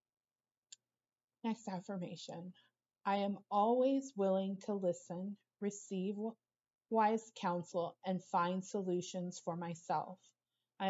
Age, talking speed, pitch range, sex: 30-49, 95 wpm, 180-215 Hz, female